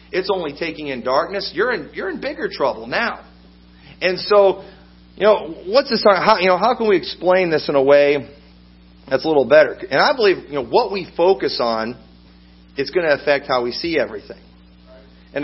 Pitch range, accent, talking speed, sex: 125-185 Hz, American, 200 wpm, male